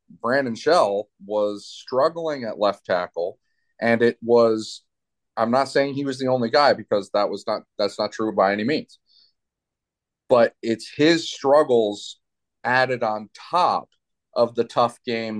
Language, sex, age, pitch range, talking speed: English, male, 30-49, 105-140 Hz, 150 wpm